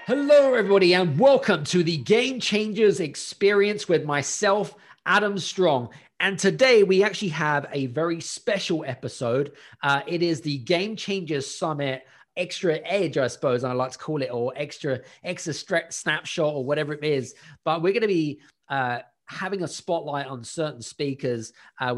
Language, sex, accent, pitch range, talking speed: English, male, British, 130-170 Hz, 160 wpm